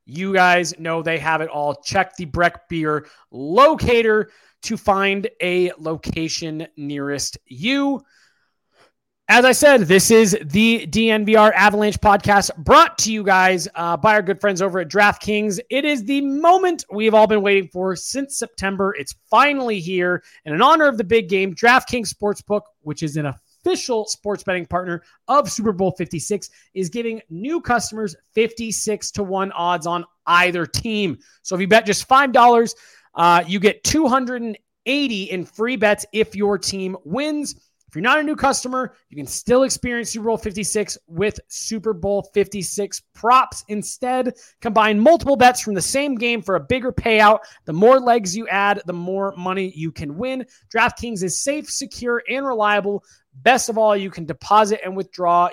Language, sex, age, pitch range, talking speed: English, male, 20-39, 185-235 Hz, 170 wpm